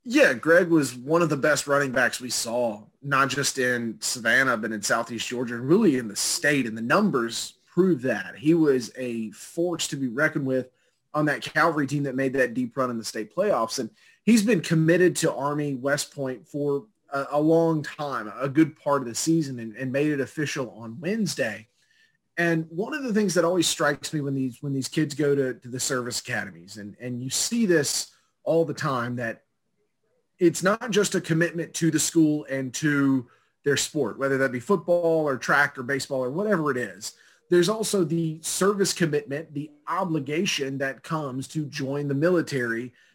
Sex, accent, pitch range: male, American, 130-165 Hz